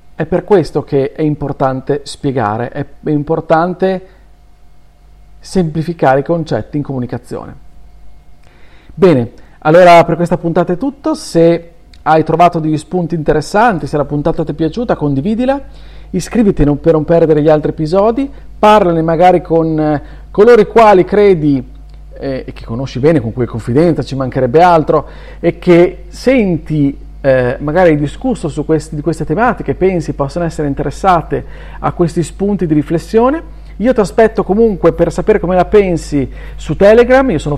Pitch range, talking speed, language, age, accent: 145-180 Hz, 145 wpm, Italian, 40-59, native